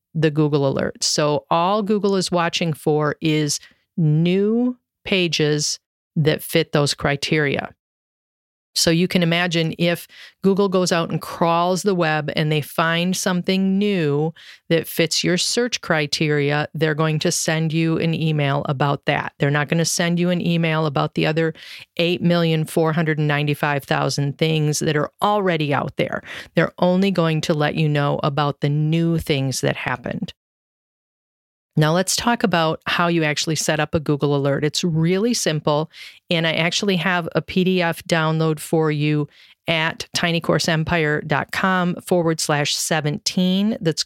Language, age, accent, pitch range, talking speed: English, 40-59, American, 155-180 Hz, 145 wpm